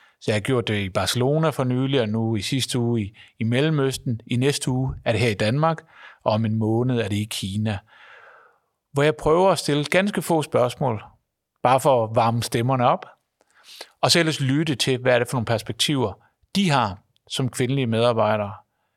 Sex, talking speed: male, 200 wpm